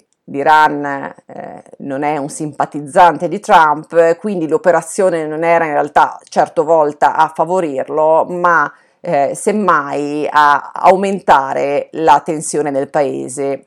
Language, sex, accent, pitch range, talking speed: Italian, female, native, 145-180 Hz, 120 wpm